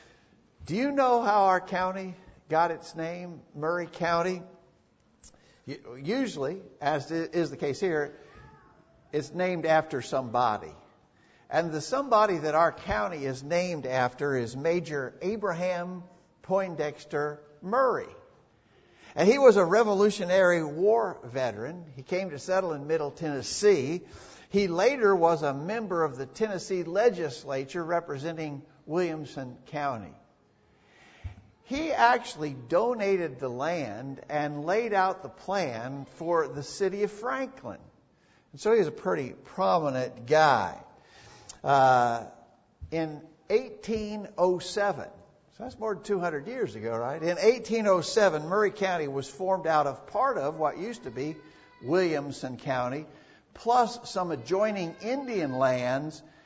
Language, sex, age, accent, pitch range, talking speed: English, male, 60-79, American, 145-200 Hz, 120 wpm